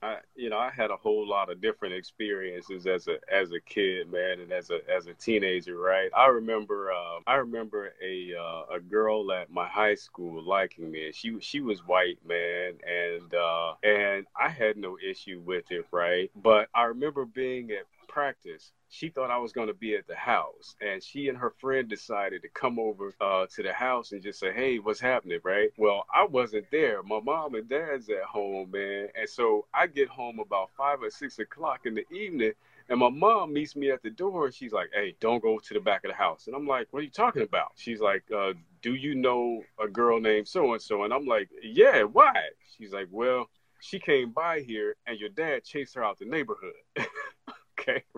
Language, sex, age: English, male, 30-49